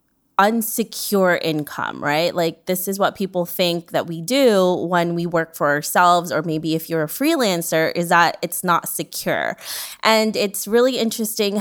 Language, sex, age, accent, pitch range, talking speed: English, female, 20-39, American, 170-220 Hz, 165 wpm